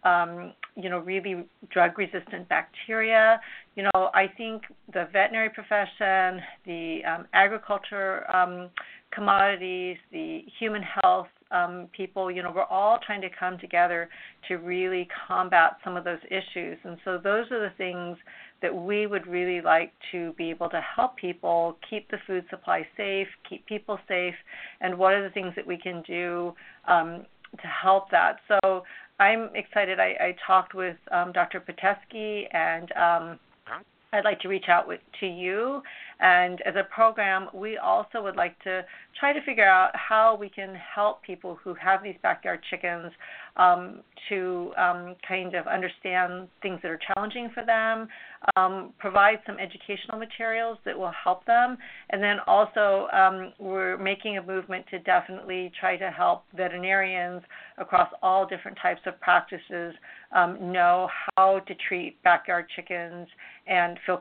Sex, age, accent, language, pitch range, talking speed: female, 50-69, American, English, 180-205 Hz, 160 wpm